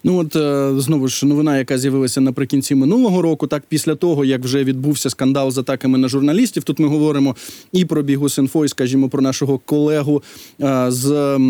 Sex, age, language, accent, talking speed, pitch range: male, 20-39, Ukrainian, native, 170 wpm, 150-195 Hz